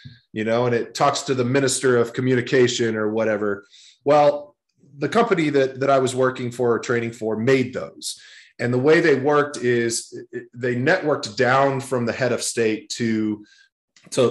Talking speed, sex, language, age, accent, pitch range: 175 wpm, male, English, 30-49, American, 110-135 Hz